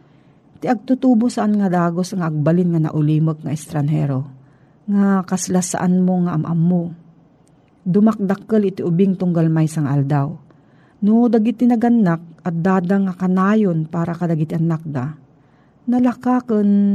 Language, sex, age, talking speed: Filipino, female, 40-59, 125 wpm